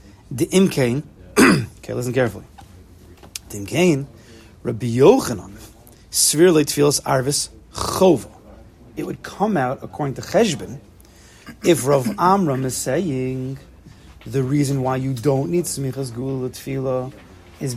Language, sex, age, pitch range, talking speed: English, male, 40-59, 115-155 Hz, 110 wpm